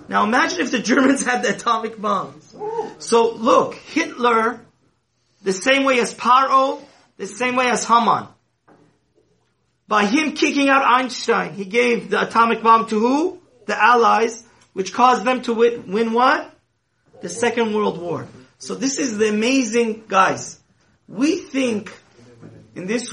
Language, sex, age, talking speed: English, male, 30-49, 150 wpm